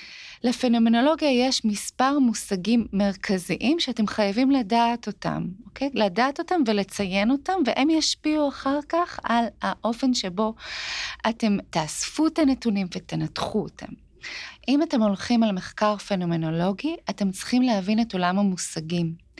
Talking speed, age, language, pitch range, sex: 120 wpm, 30-49, Hebrew, 190-250 Hz, female